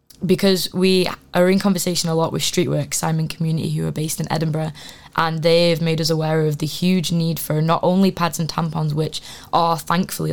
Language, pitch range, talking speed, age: English, 160-185 Hz, 200 wpm, 10-29